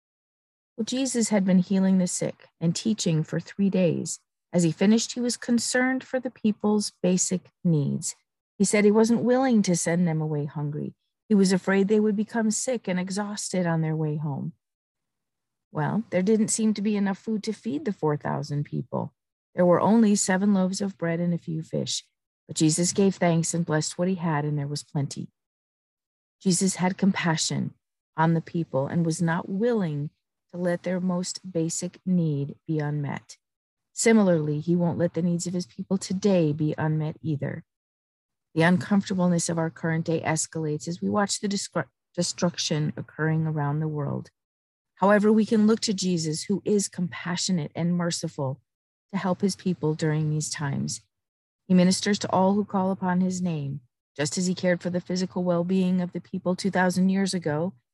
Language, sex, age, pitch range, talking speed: English, female, 50-69, 155-195 Hz, 180 wpm